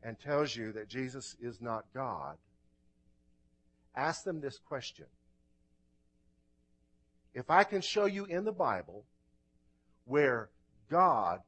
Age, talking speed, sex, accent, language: 50-69, 115 wpm, male, American, English